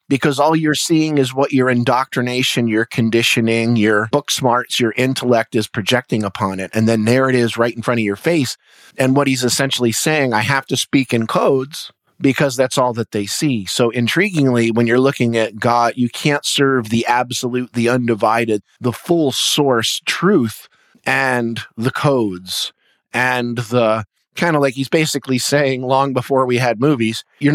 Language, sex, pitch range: English, male, 115-140 Hz